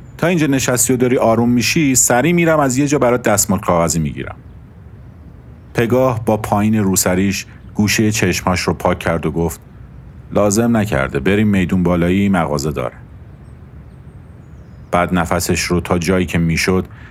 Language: Persian